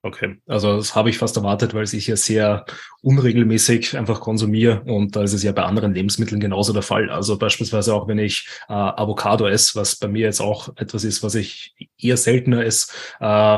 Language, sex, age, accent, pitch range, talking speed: German, male, 20-39, German, 105-120 Hz, 210 wpm